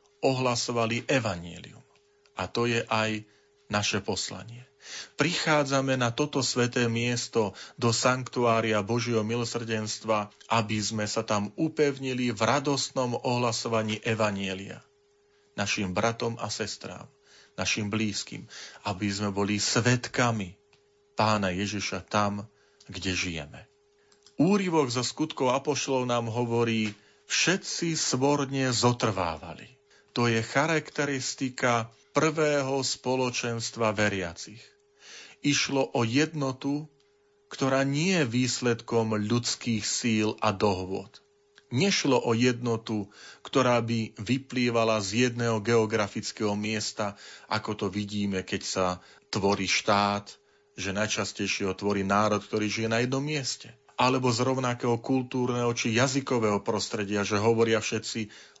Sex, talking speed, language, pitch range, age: male, 105 wpm, Slovak, 105-135 Hz, 40-59